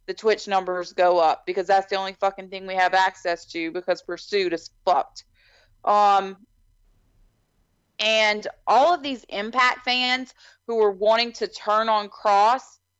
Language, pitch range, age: English, 185-255 Hz, 40-59